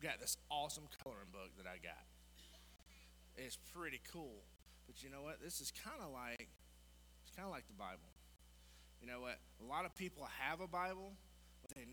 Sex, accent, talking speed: male, American, 180 wpm